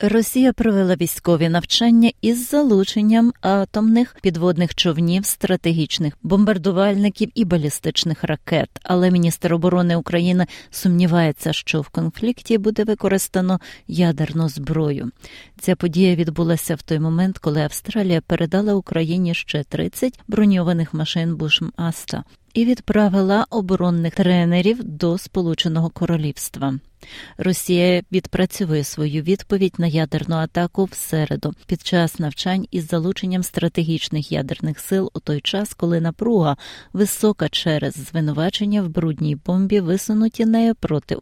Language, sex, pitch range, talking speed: Ukrainian, female, 165-195 Hz, 115 wpm